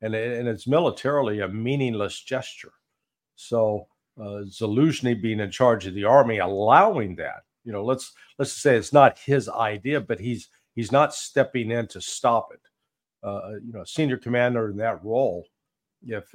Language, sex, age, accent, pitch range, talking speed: English, male, 50-69, American, 110-135 Hz, 160 wpm